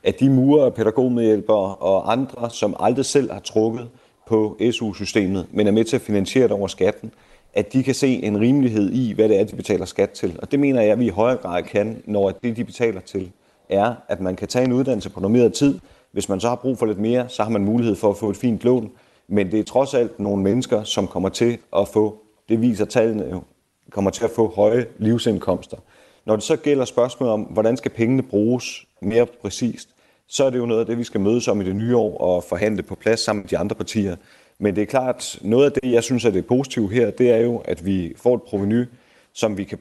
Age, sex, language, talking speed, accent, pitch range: 30-49, male, Danish, 245 wpm, native, 100-120 Hz